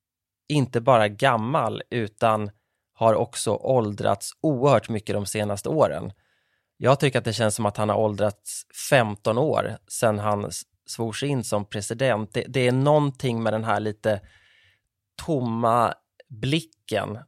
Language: Swedish